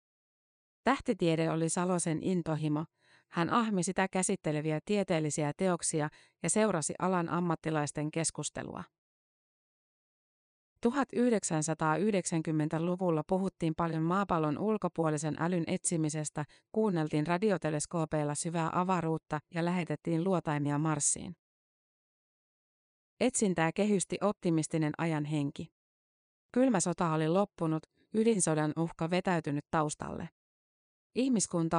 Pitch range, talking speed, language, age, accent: 155-185 Hz, 85 wpm, Finnish, 30-49, native